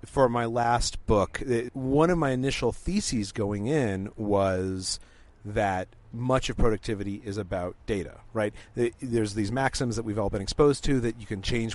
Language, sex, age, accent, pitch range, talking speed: English, male, 40-59, American, 105-135 Hz, 170 wpm